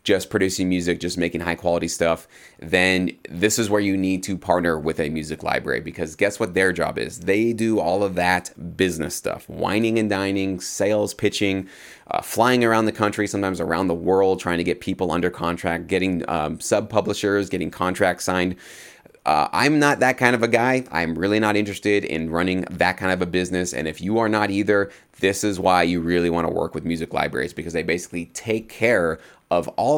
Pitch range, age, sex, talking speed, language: 85-100 Hz, 30-49, male, 205 wpm, English